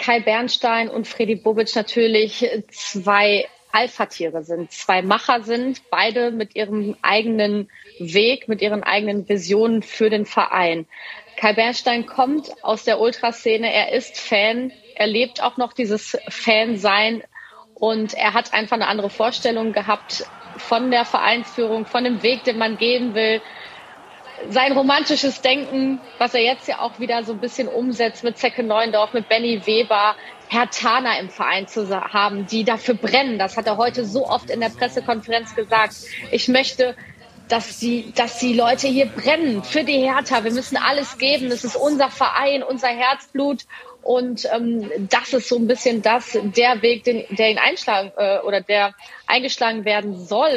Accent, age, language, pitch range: German, 30-49, German, 215-245 Hz